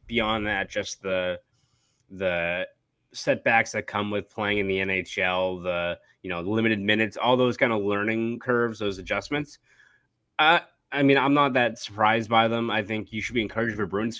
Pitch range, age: 100-120 Hz, 20-39